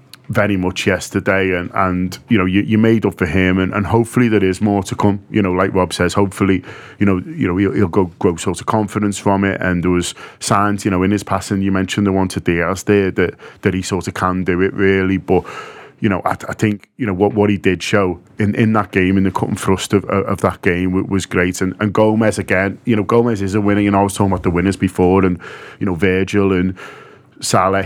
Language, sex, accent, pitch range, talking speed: English, male, British, 95-110 Hz, 255 wpm